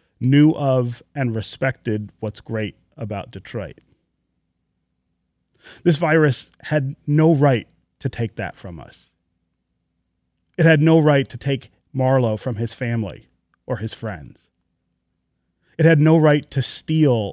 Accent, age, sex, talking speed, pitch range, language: American, 30-49, male, 130 wpm, 90-130 Hz, English